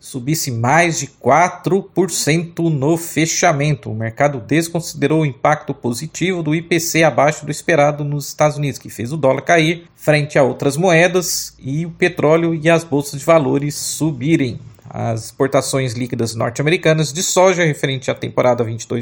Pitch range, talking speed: 140-170 Hz, 150 wpm